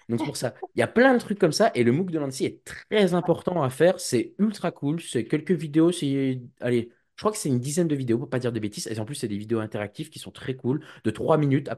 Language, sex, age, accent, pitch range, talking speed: French, male, 20-39, French, 105-145 Hz, 295 wpm